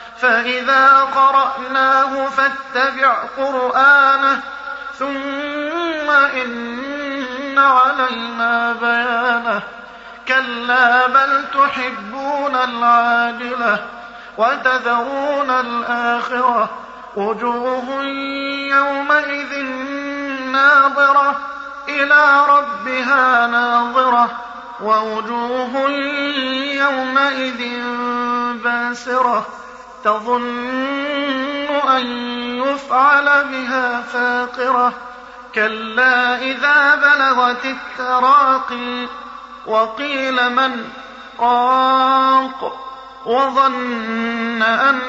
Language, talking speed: Arabic, 50 wpm